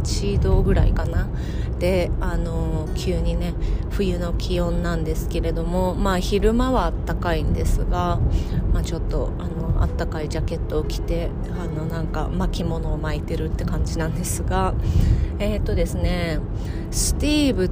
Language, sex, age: Japanese, female, 30-49